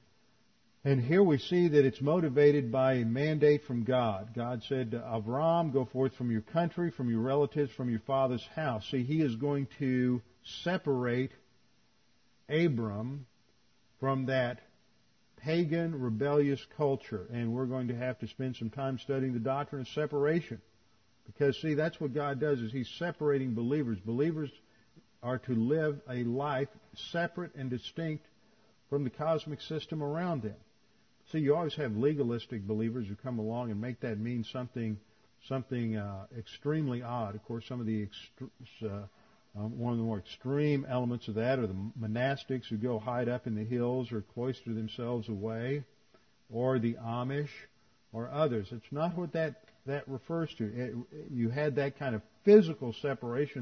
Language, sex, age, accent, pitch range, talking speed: English, male, 50-69, American, 115-145 Hz, 165 wpm